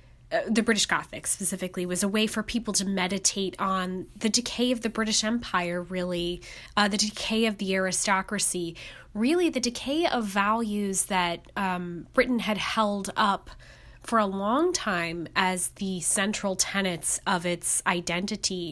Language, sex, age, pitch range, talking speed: English, female, 20-39, 180-220 Hz, 155 wpm